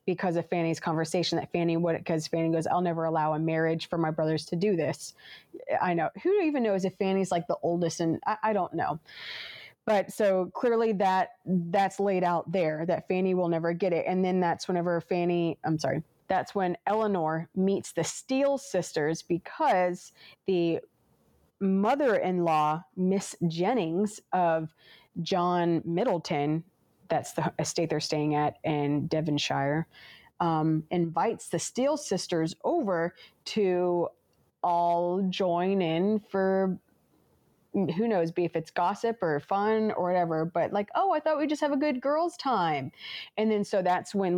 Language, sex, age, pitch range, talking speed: English, female, 30-49, 165-215 Hz, 160 wpm